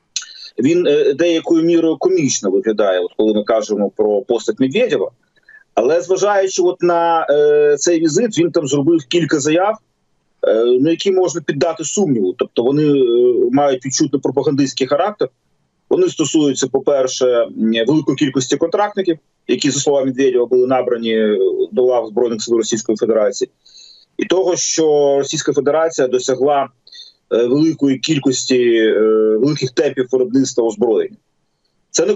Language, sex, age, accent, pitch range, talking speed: Ukrainian, male, 30-49, native, 130-210 Hz, 130 wpm